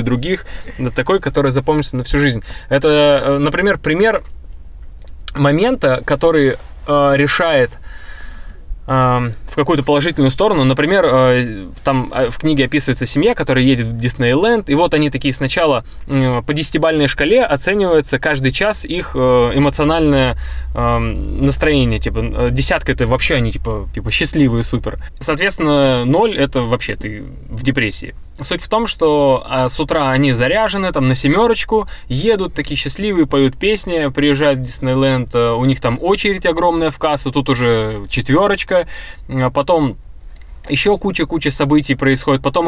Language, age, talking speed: Russian, 20-39, 140 wpm